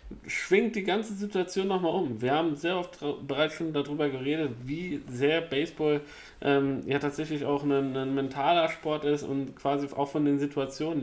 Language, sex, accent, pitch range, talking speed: German, male, German, 135-160 Hz, 175 wpm